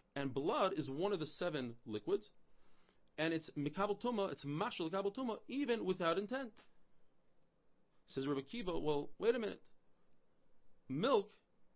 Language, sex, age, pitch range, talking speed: English, male, 40-59, 145-210 Hz, 135 wpm